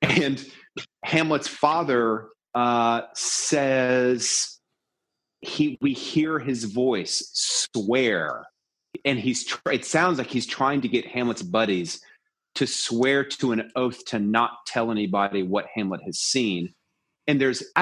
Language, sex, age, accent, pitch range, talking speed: English, male, 30-49, American, 105-135 Hz, 130 wpm